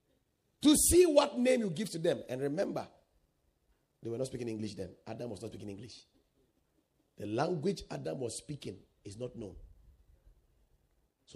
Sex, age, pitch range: male, 40-59, 110-170 Hz